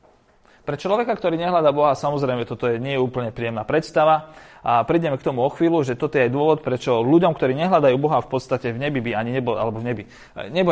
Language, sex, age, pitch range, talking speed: Slovak, male, 30-49, 130-180 Hz, 225 wpm